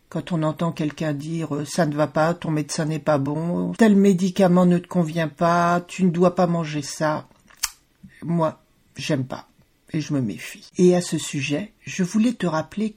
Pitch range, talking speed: 150-200 Hz, 195 wpm